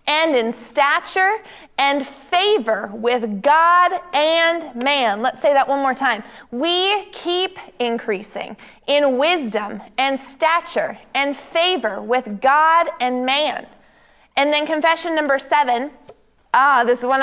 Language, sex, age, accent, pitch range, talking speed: English, female, 20-39, American, 250-320 Hz, 130 wpm